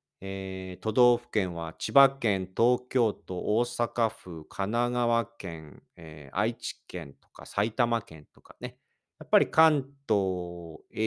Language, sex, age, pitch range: Japanese, male, 40-59, 95-145 Hz